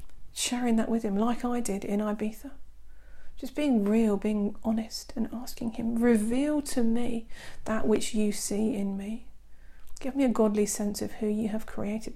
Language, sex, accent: English, female, British